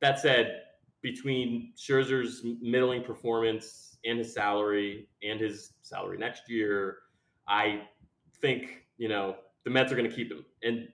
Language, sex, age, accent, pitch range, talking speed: English, male, 20-39, American, 110-135 Hz, 135 wpm